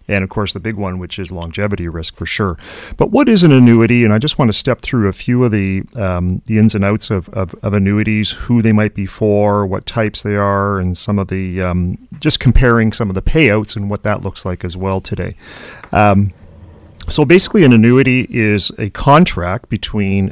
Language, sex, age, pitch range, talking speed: English, male, 40-59, 100-120 Hz, 220 wpm